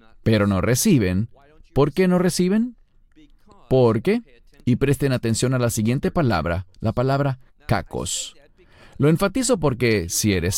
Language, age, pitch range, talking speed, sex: English, 40-59, 105-150 Hz, 135 wpm, male